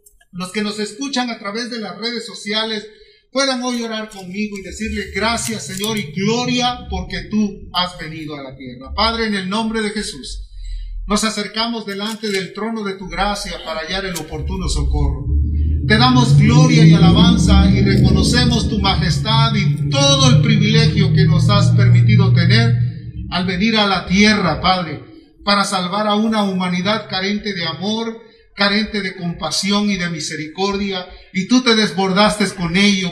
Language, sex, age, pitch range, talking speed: Spanish, male, 50-69, 170-225 Hz, 165 wpm